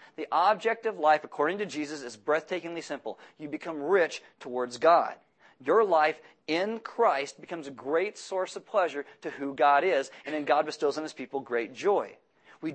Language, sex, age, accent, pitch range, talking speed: English, male, 40-59, American, 145-195 Hz, 185 wpm